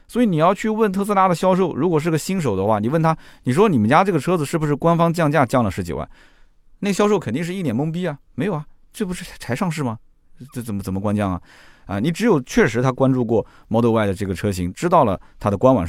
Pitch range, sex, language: 105-170 Hz, male, Chinese